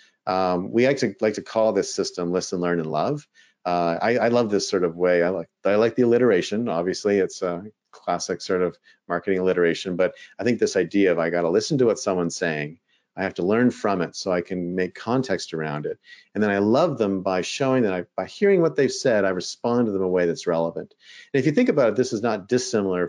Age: 40-59